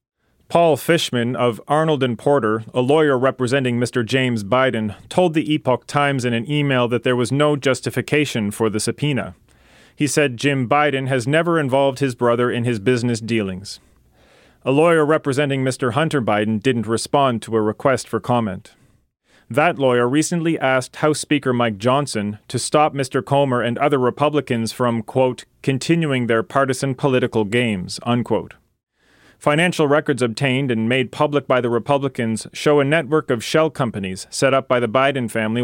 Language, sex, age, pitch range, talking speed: English, male, 30-49, 115-145 Hz, 165 wpm